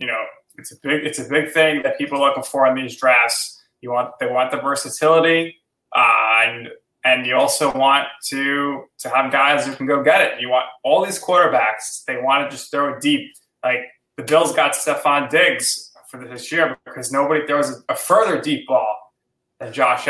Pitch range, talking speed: 130-165 Hz, 205 wpm